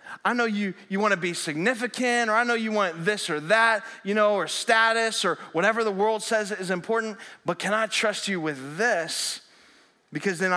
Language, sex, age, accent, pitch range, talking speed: English, male, 20-39, American, 165-200 Hz, 205 wpm